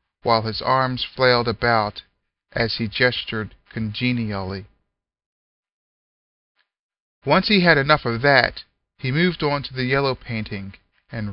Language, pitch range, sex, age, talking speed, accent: English, 110-135 Hz, male, 40-59, 120 wpm, American